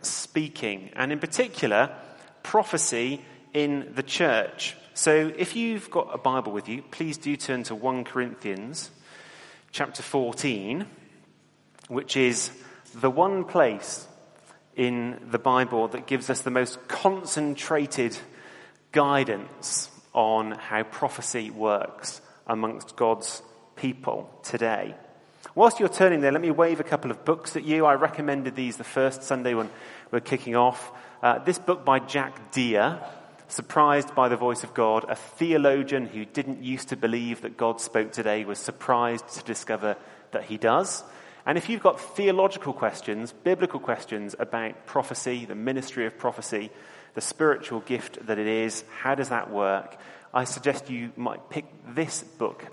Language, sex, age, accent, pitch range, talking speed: English, male, 30-49, British, 115-145 Hz, 150 wpm